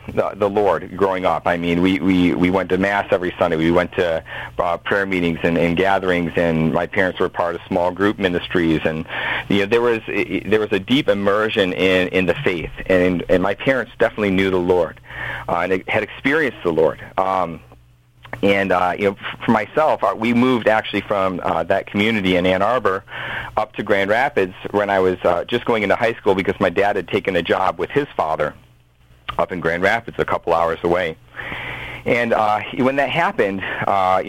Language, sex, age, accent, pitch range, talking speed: English, male, 50-69, American, 90-105 Hz, 200 wpm